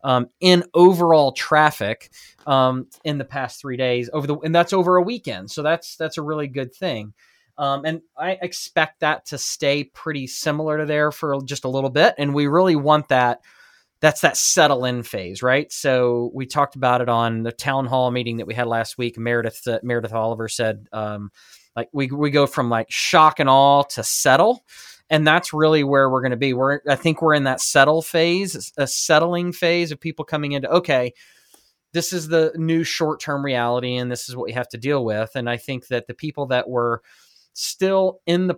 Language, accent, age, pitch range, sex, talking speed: English, American, 20-39, 125-160 Hz, male, 205 wpm